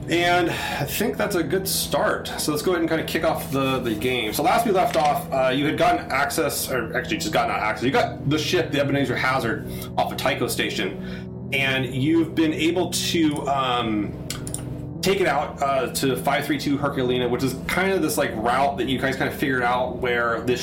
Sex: male